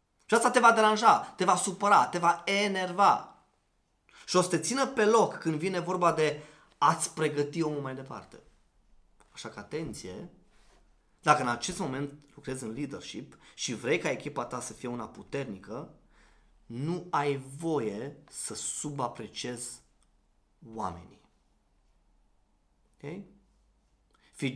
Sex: male